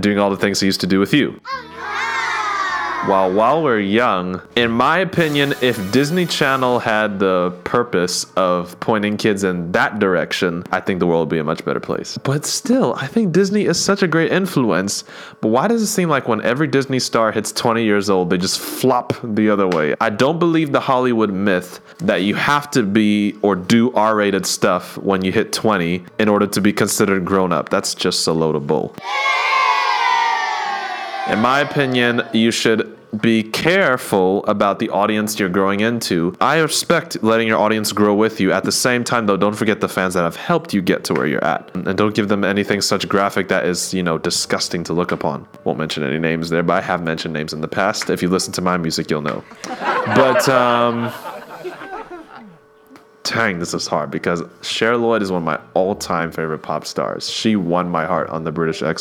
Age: 20-39